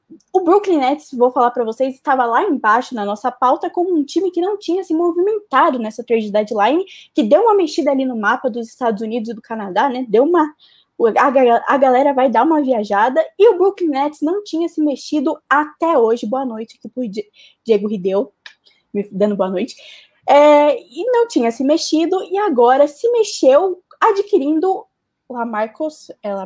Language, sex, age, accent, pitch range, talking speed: Portuguese, female, 10-29, Brazilian, 230-310 Hz, 180 wpm